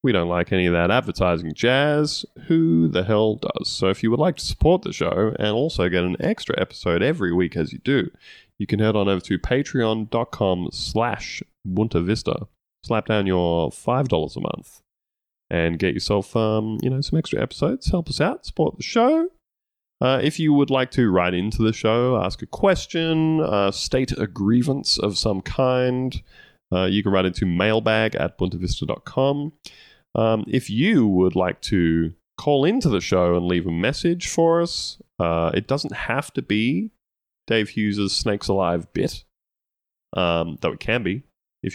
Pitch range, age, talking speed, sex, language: 90-130 Hz, 20-39, 180 wpm, male, English